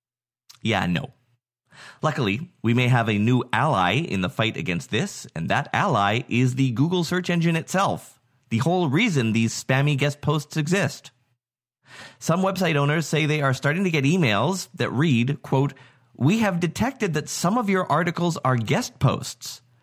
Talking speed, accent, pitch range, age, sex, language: 165 wpm, American, 120-150 Hz, 30-49, male, English